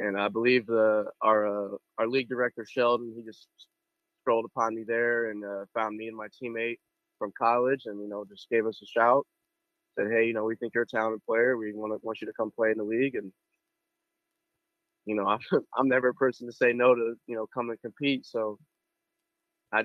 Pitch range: 110-135 Hz